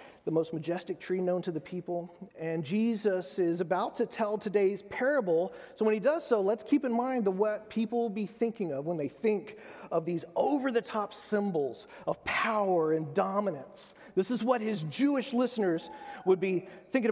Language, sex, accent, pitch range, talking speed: English, male, American, 170-220 Hz, 180 wpm